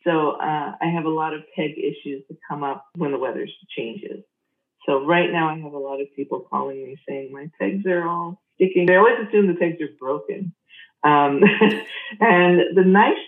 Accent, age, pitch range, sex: American, 40-59, 140-180 Hz, female